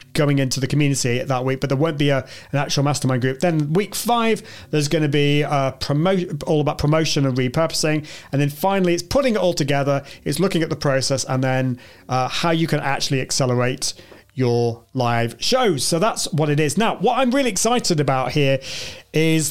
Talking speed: 205 wpm